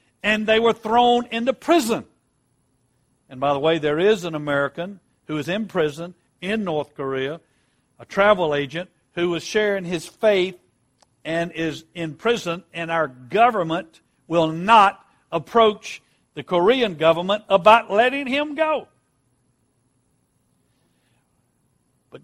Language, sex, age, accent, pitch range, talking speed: English, male, 60-79, American, 160-240 Hz, 125 wpm